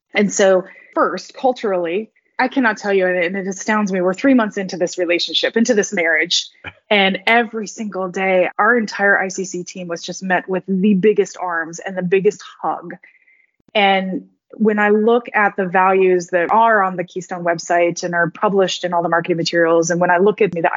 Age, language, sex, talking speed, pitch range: 20-39, English, female, 195 wpm, 175-210 Hz